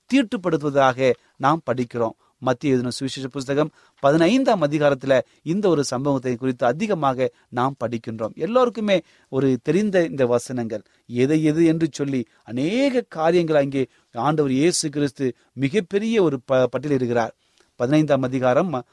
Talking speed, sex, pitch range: 115 wpm, male, 125-180 Hz